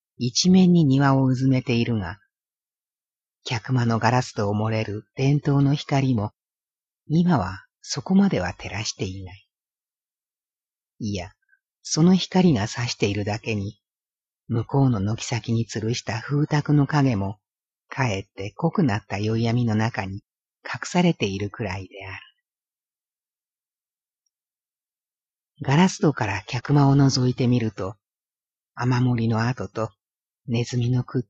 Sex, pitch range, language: female, 105-140 Hz, Japanese